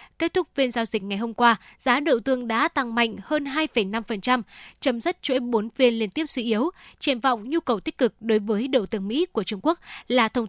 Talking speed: 235 wpm